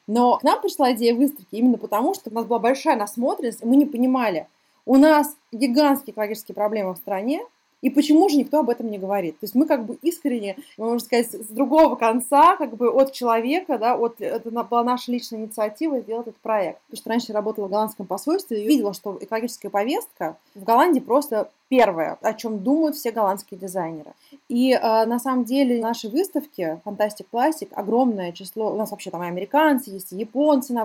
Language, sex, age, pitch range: Russian, female, 20-39, 205-270 Hz